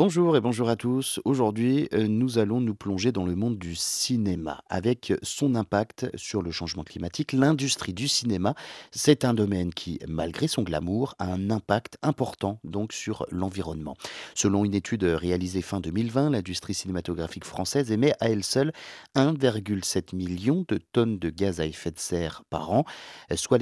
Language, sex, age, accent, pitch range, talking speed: French, male, 40-59, French, 95-125 Hz, 165 wpm